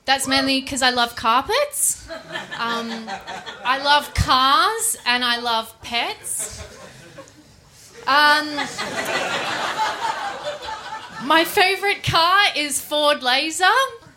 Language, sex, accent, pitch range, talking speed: English, female, Australian, 255-360 Hz, 90 wpm